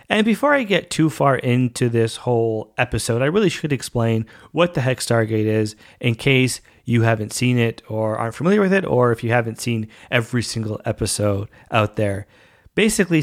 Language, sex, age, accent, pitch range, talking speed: English, male, 30-49, American, 110-140 Hz, 185 wpm